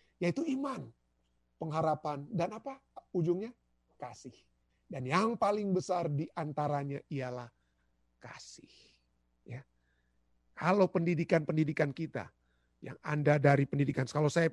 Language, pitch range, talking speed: Indonesian, 120-160 Hz, 100 wpm